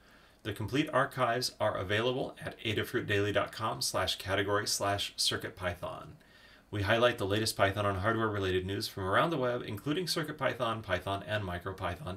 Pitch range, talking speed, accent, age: 95-115 Hz, 140 wpm, American, 30-49